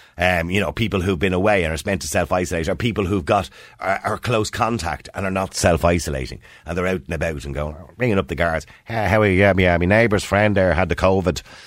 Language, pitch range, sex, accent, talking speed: English, 85-115 Hz, male, Irish, 250 wpm